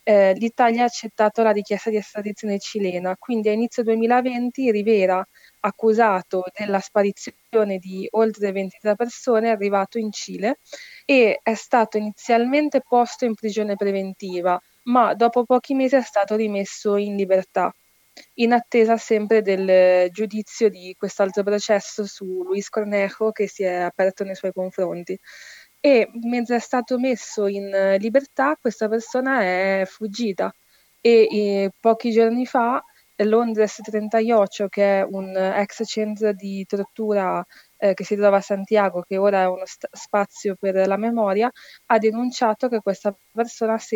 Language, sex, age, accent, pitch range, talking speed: Italian, female, 20-39, native, 195-230 Hz, 145 wpm